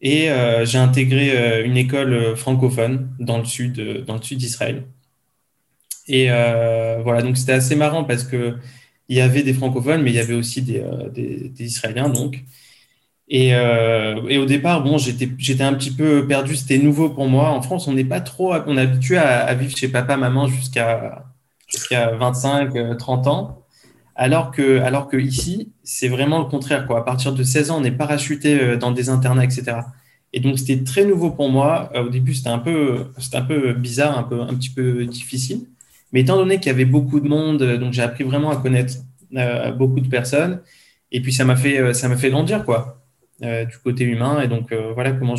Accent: French